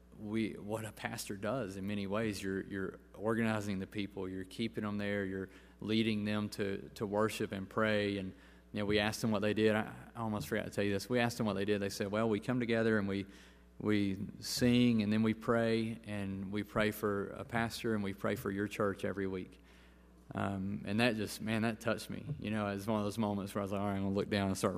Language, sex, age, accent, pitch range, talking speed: English, male, 30-49, American, 100-110 Hz, 250 wpm